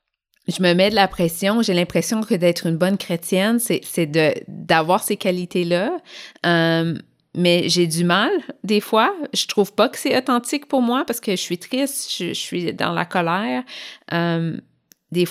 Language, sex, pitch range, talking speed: French, female, 175-225 Hz, 185 wpm